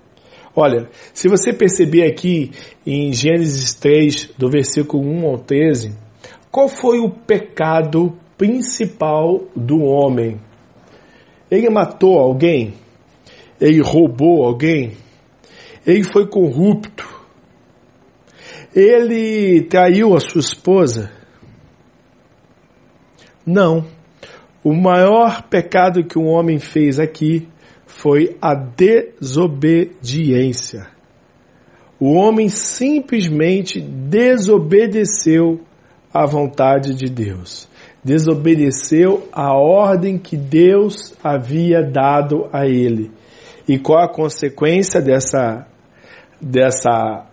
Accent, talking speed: Brazilian, 90 wpm